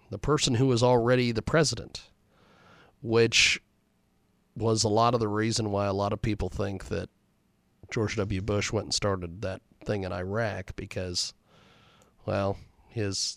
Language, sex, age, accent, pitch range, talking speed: English, male, 40-59, American, 100-115 Hz, 155 wpm